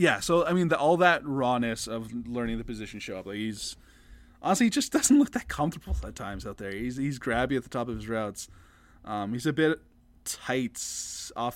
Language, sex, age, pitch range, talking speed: English, male, 20-39, 105-145 Hz, 225 wpm